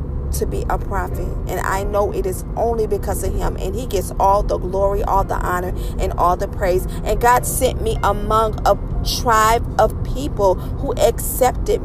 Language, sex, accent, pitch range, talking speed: English, female, American, 80-100 Hz, 185 wpm